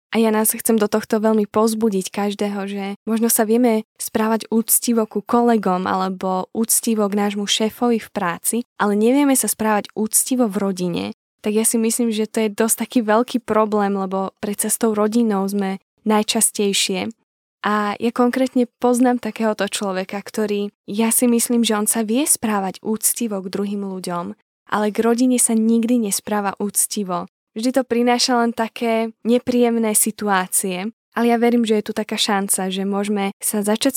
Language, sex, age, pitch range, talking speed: Czech, female, 10-29, 200-235 Hz, 165 wpm